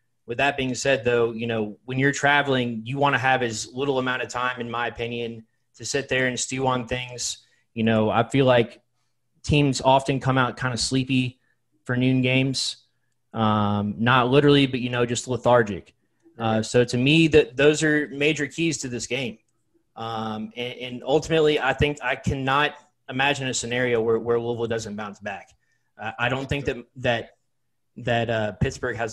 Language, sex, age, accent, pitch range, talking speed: English, male, 20-39, American, 115-135 Hz, 190 wpm